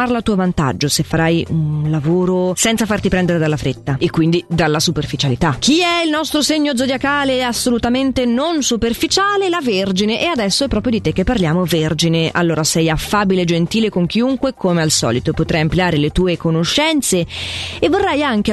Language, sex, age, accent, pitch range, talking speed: Italian, female, 30-49, native, 170-265 Hz, 175 wpm